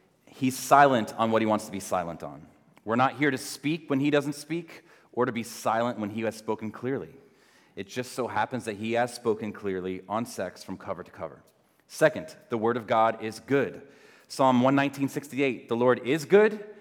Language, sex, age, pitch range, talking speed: English, male, 30-49, 110-140 Hz, 200 wpm